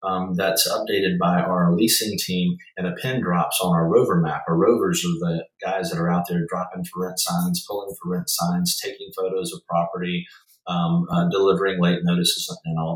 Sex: male